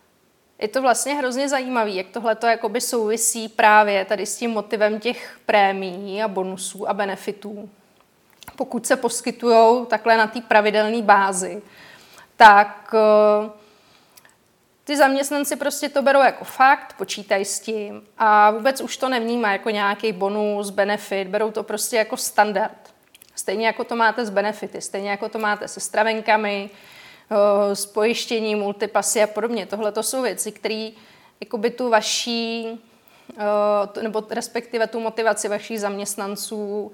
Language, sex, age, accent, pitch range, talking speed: Czech, female, 30-49, native, 205-230 Hz, 135 wpm